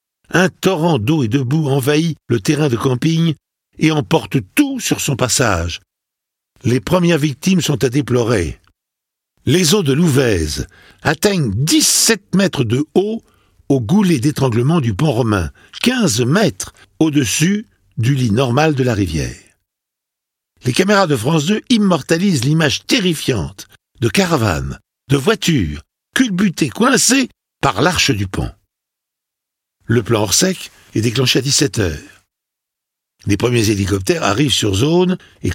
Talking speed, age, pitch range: 135 wpm, 60-79, 120-170 Hz